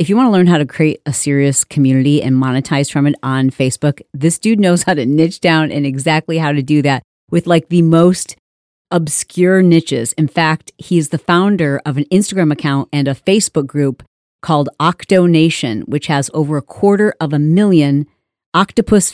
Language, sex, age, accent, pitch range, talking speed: English, female, 40-59, American, 150-185 Hz, 190 wpm